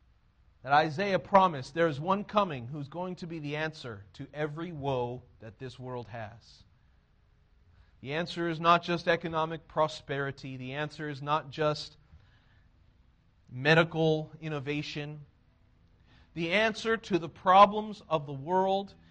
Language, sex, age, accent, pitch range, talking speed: English, male, 40-59, American, 125-200 Hz, 135 wpm